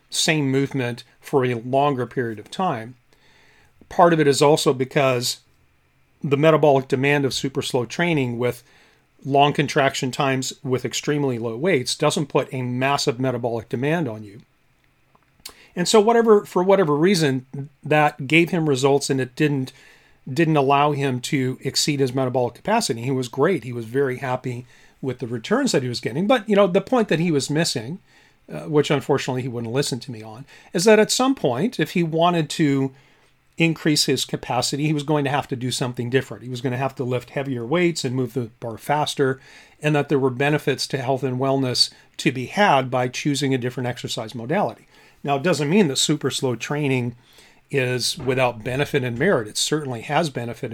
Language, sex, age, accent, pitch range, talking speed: English, male, 40-59, American, 125-150 Hz, 190 wpm